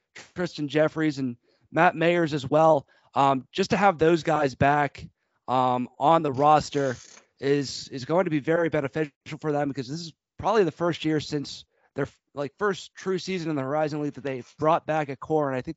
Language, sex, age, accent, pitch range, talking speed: English, male, 30-49, American, 140-165 Hz, 200 wpm